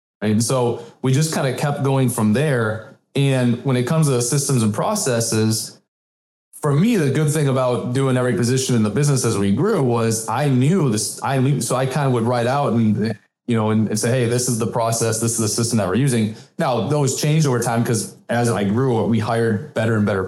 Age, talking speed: 20-39, 235 wpm